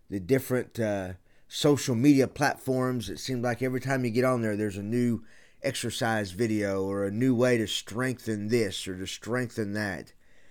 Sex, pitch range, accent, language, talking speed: male, 110-145 Hz, American, English, 175 wpm